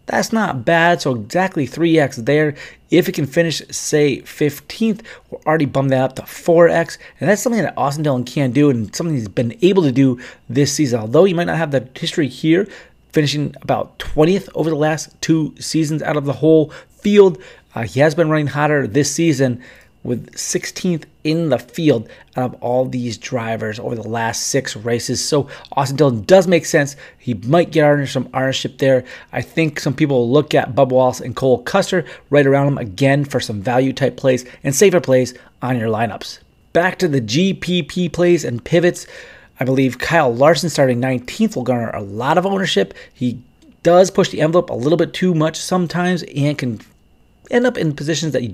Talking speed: 195 wpm